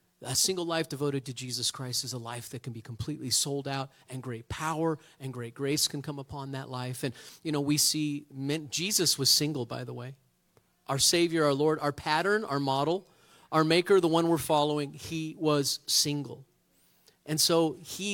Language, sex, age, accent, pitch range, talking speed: English, male, 40-59, American, 130-160 Hz, 195 wpm